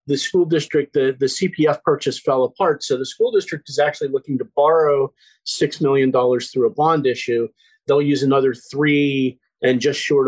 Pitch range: 125-175 Hz